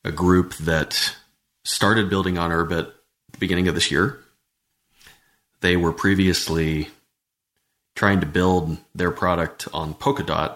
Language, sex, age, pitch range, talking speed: English, male, 30-49, 80-100 Hz, 130 wpm